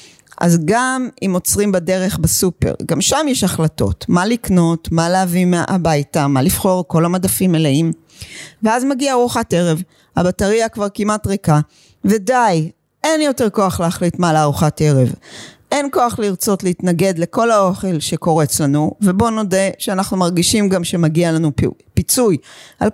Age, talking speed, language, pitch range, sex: 40-59, 140 wpm, Hebrew, 165-225 Hz, female